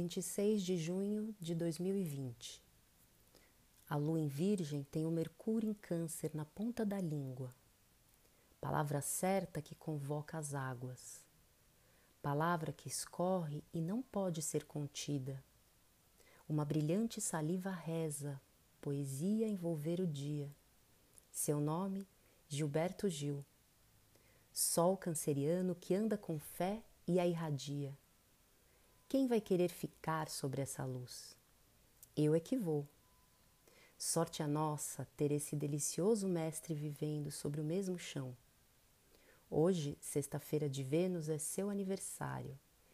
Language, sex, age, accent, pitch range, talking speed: Portuguese, female, 30-49, Brazilian, 140-180 Hz, 115 wpm